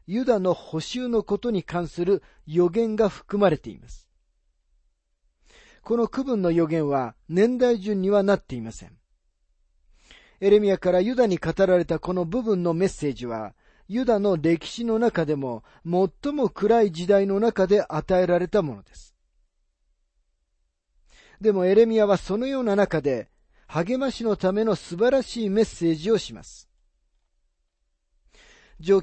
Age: 40-59